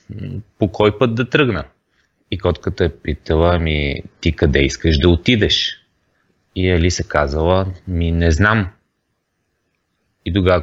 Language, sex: Bulgarian, male